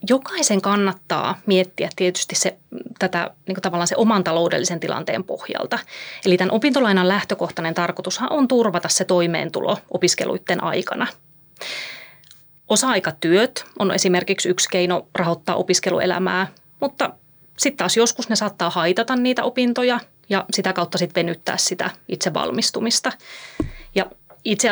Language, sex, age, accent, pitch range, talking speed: Finnish, female, 30-49, native, 180-230 Hz, 120 wpm